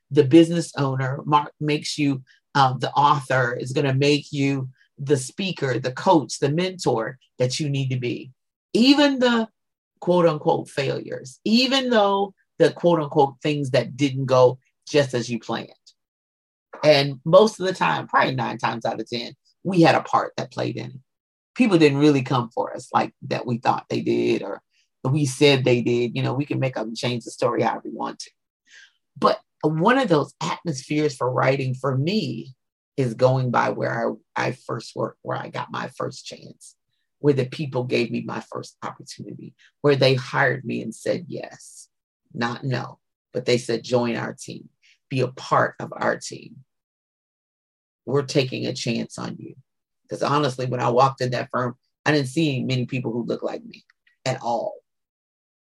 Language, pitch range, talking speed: English, 125-155 Hz, 185 wpm